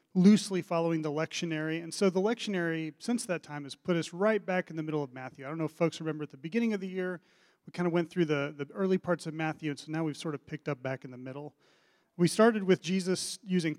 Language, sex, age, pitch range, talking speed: English, male, 40-59, 155-185 Hz, 265 wpm